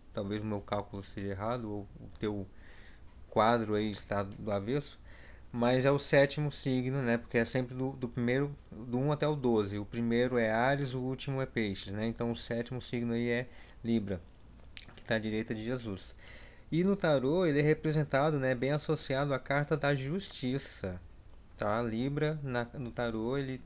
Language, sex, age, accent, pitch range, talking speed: Portuguese, male, 20-39, Brazilian, 110-140 Hz, 185 wpm